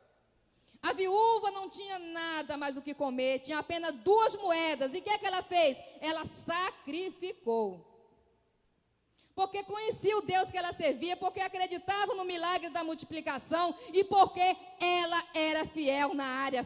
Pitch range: 265-380 Hz